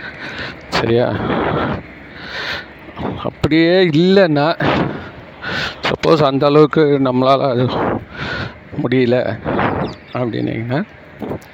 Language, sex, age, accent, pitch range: Tamil, male, 50-69, native, 155-215 Hz